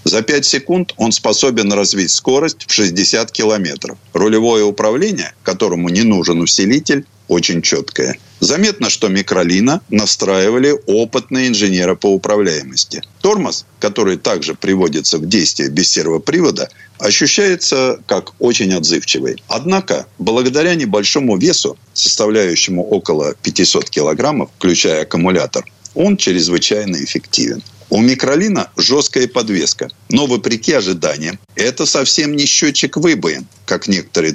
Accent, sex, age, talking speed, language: native, male, 50-69, 115 wpm, Russian